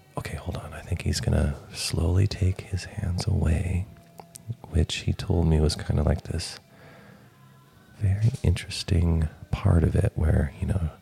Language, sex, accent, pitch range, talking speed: English, male, American, 85-115 Hz, 165 wpm